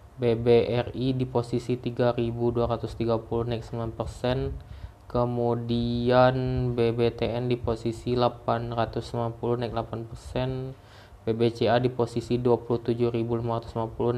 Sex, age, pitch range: male, 20-39, 110-125 Hz